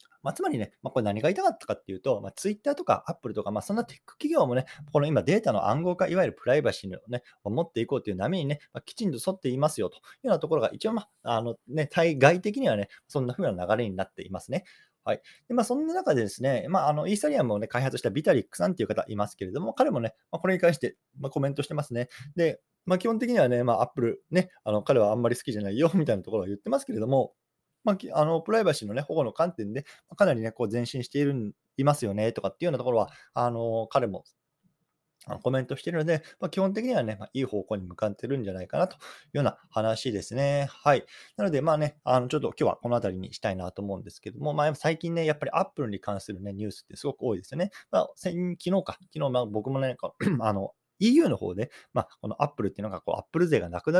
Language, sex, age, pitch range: Japanese, male, 20-39, 105-165 Hz